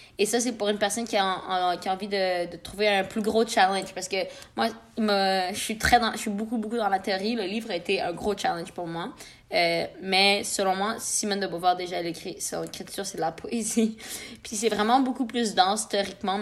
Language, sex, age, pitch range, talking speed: French, female, 20-39, 190-220 Hz, 230 wpm